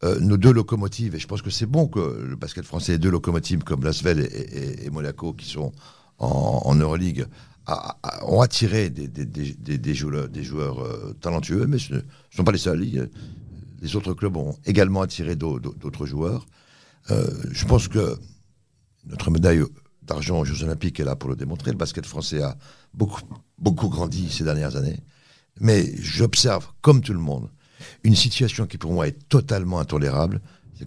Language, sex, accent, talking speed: French, male, French, 195 wpm